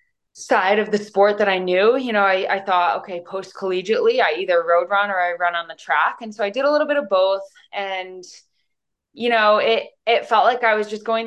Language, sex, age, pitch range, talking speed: English, female, 20-39, 165-205 Hz, 235 wpm